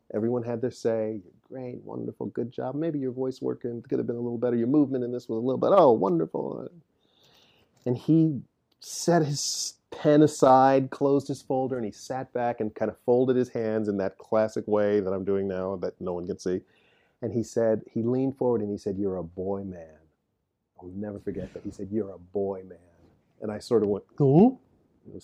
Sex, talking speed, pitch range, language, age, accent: male, 215 wpm, 105-135 Hz, English, 40-59, American